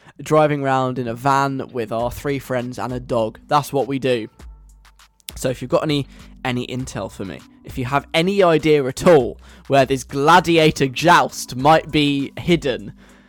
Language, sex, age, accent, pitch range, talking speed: English, male, 10-29, British, 130-155 Hz, 175 wpm